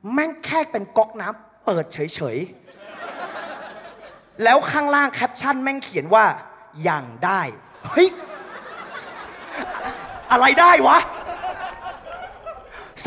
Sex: male